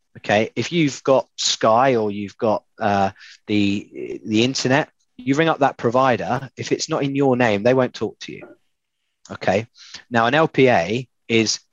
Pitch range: 100-130 Hz